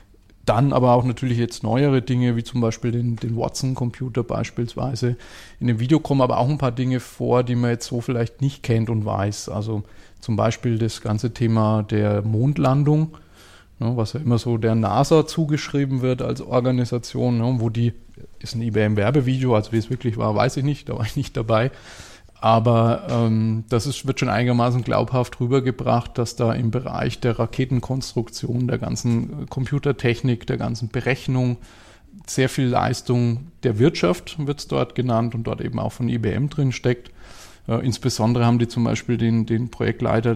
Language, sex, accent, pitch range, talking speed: German, male, German, 115-130 Hz, 170 wpm